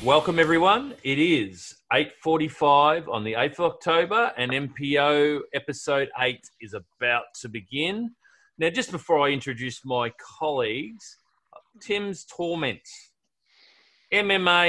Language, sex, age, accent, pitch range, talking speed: English, male, 30-49, Australian, 135-170 Hz, 115 wpm